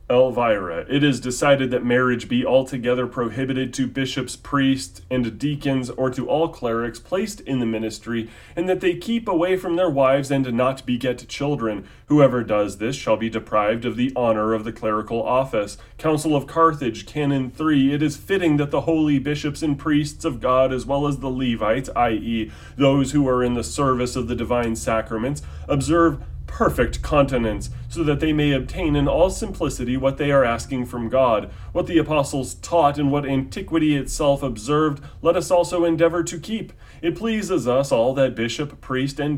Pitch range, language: 120-150 Hz, English